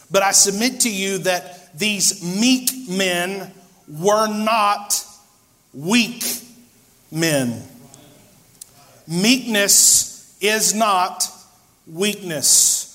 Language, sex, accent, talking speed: English, male, American, 80 wpm